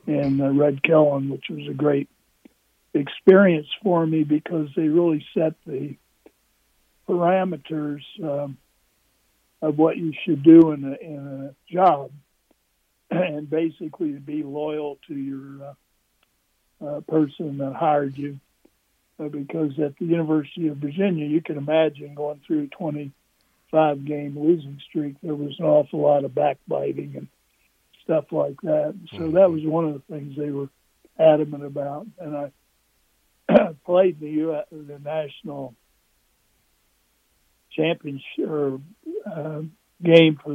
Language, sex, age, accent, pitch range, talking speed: English, male, 60-79, American, 145-160 Hz, 130 wpm